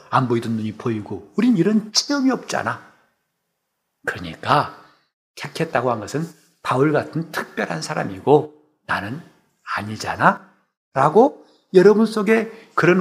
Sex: male